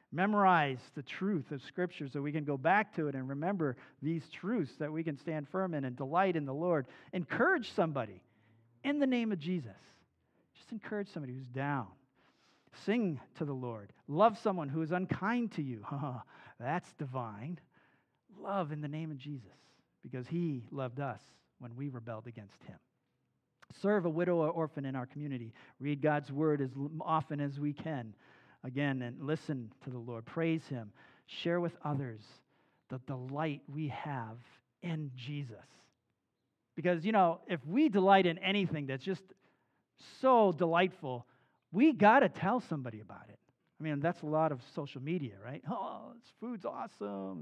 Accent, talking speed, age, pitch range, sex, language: American, 165 wpm, 50-69, 130-175 Hz, male, English